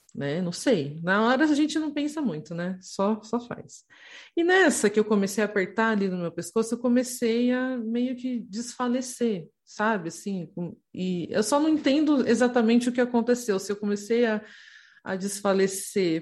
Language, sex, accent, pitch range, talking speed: English, female, Brazilian, 175-235 Hz, 175 wpm